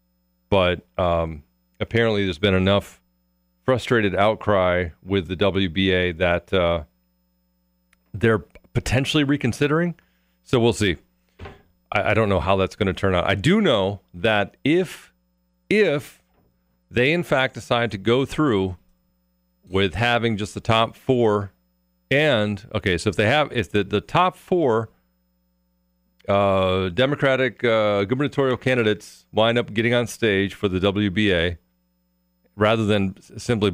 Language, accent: English, American